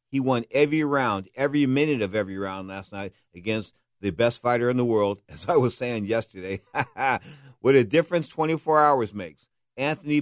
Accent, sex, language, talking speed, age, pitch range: American, male, English, 175 wpm, 50-69, 100-130 Hz